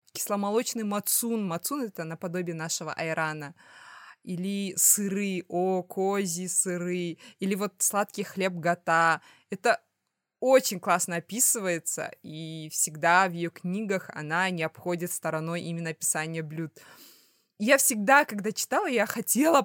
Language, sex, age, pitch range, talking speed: Russian, female, 20-39, 175-230 Hz, 120 wpm